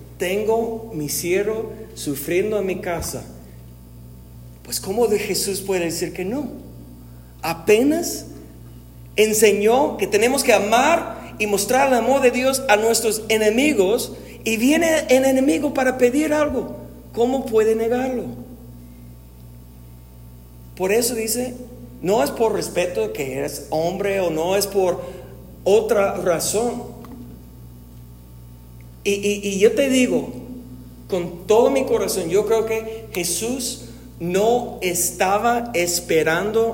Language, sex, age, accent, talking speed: Spanish, male, 40-59, Mexican, 120 wpm